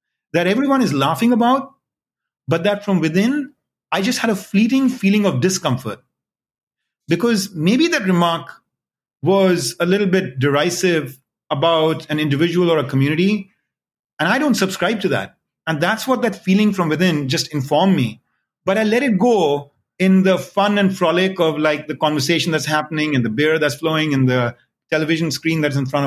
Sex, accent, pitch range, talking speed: male, Indian, 145-205 Hz, 175 wpm